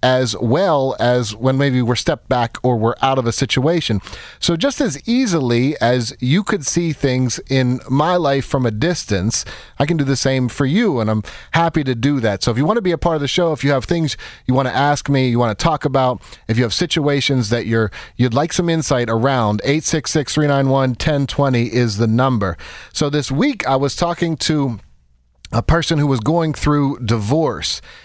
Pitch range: 120-150 Hz